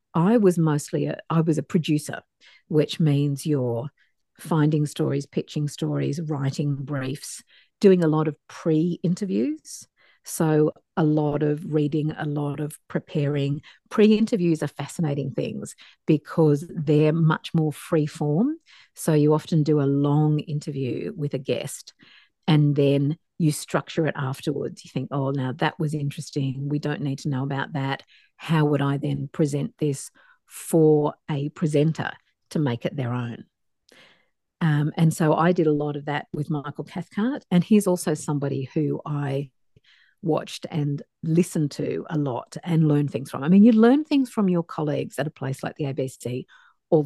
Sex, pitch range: female, 145-165 Hz